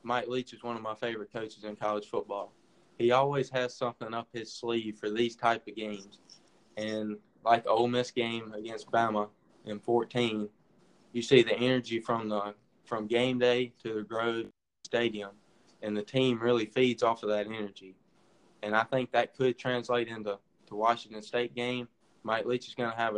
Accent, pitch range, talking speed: American, 110-125 Hz, 185 wpm